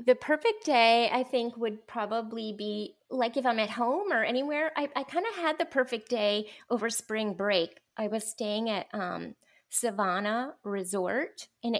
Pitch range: 205-255 Hz